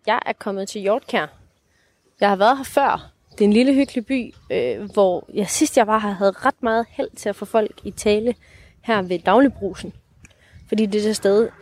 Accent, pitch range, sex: native, 185-230 Hz, female